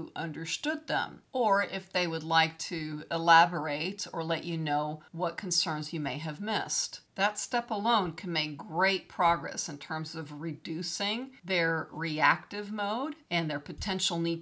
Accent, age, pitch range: American, 50-69, 160-205 Hz